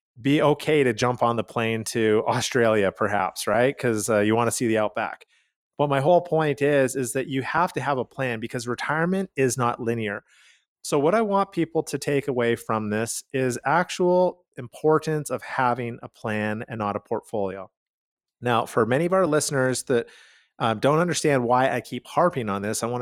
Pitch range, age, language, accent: 115-140 Hz, 30-49, English, American